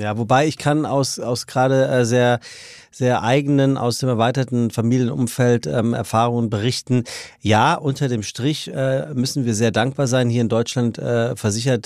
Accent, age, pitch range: German, 40-59, 110-135 Hz